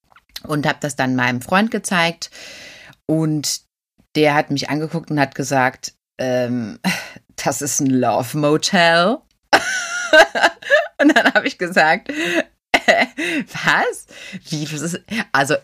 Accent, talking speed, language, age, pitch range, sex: German, 105 wpm, German, 30-49, 130-180 Hz, female